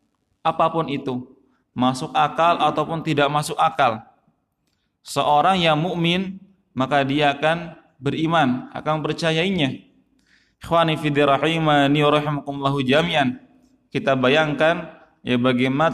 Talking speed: 90 wpm